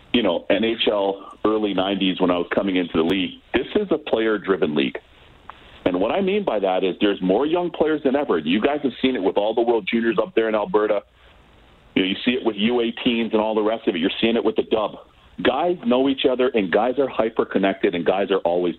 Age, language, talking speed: 40-59, English, 240 wpm